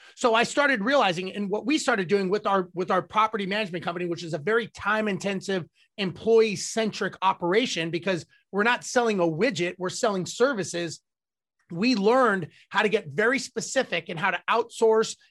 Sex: male